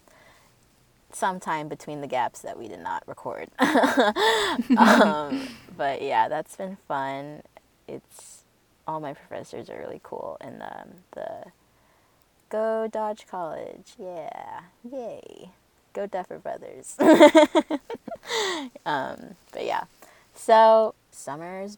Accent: American